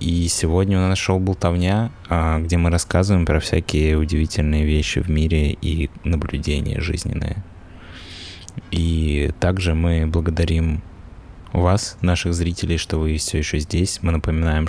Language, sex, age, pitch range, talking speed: Russian, male, 20-39, 80-95 Hz, 130 wpm